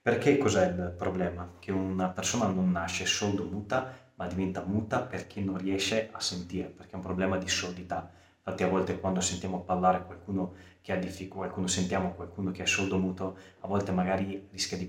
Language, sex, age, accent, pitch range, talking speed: Italian, male, 20-39, native, 90-110 Hz, 190 wpm